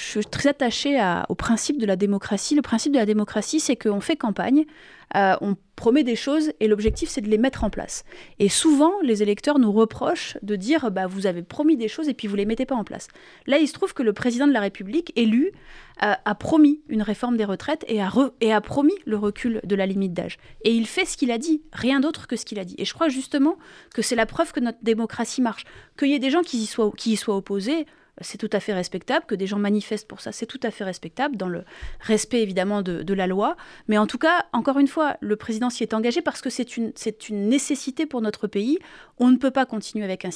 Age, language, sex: 30-49, French, female